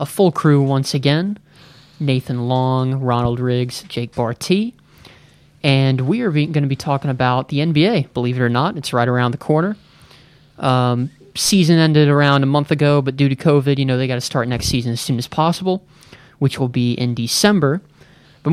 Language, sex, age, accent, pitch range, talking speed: English, male, 30-49, American, 125-150 Hz, 190 wpm